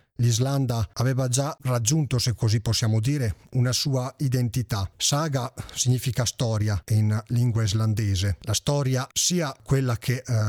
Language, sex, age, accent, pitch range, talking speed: Italian, male, 40-59, native, 105-125 Hz, 125 wpm